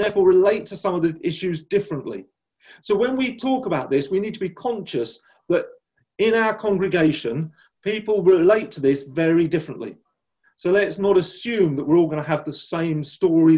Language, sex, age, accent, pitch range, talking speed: English, male, 40-59, British, 150-205 Hz, 185 wpm